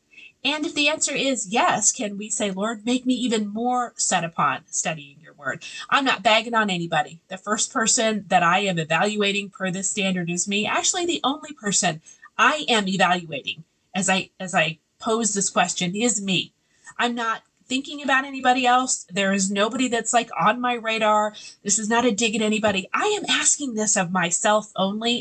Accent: American